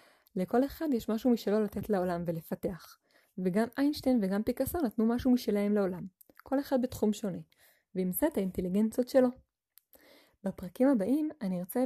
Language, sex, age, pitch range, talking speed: Hebrew, female, 20-39, 185-240 Hz, 140 wpm